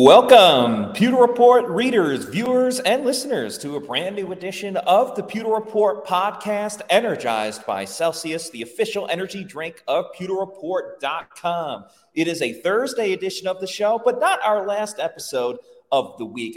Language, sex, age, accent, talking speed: English, male, 30-49, American, 150 wpm